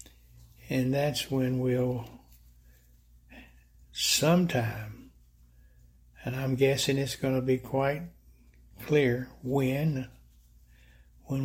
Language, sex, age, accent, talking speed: English, male, 60-79, American, 85 wpm